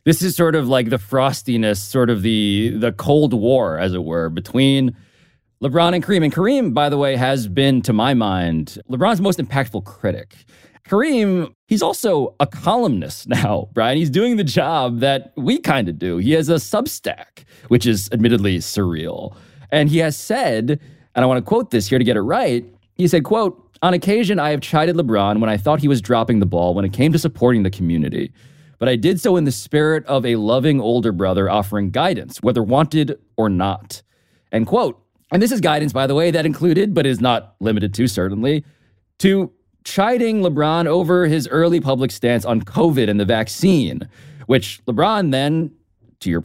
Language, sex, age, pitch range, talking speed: English, male, 20-39, 110-160 Hz, 195 wpm